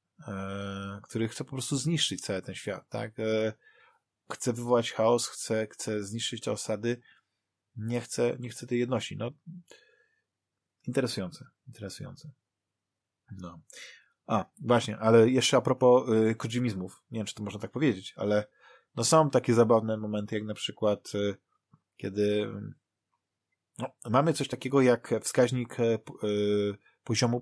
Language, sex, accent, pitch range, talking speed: Polish, male, native, 105-130 Hz, 125 wpm